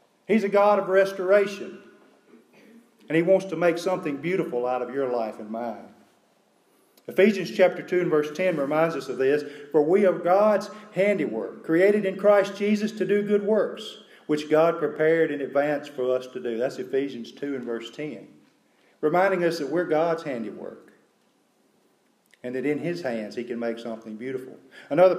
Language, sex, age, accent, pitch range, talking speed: English, male, 40-59, American, 140-195 Hz, 175 wpm